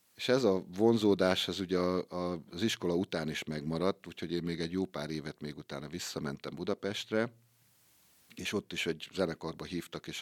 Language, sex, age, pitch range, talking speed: Hungarian, male, 50-69, 80-95 Hz, 170 wpm